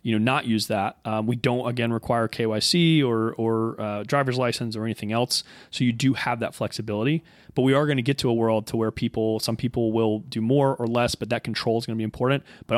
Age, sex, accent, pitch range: 30-49, male, American, 110-130 Hz